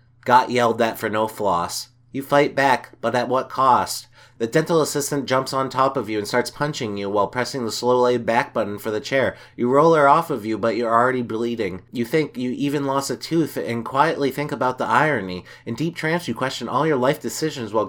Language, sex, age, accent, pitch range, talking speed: English, male, 30-49, American, 115-150 Hz, 230 wpm